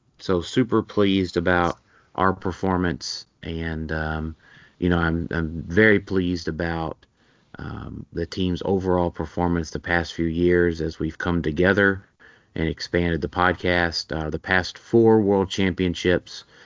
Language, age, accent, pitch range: English, 30-49, American, 80-95 Hz